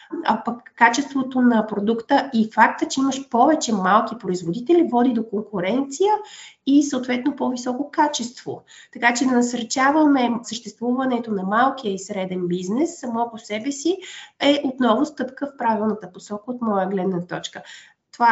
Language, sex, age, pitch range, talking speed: Bulgarian, female, 30-49, 205-250 Hz, 145 wpm